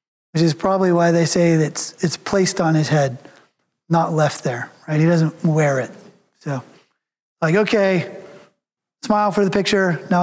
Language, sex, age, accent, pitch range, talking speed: English, male, 30-49, American, 155-180 Hz, 170 wpm